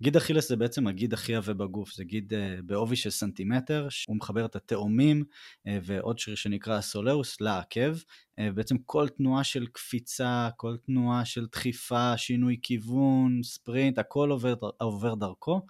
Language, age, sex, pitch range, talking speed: Hebrew, 20-39, male, 105-125 Hz, 155 wpm